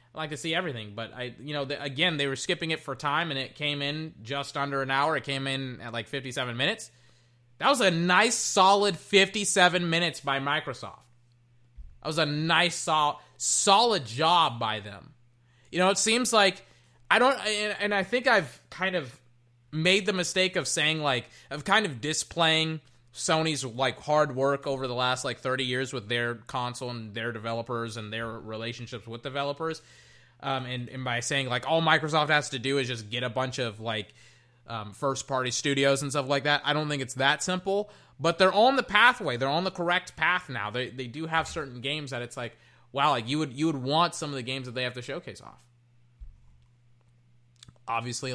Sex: male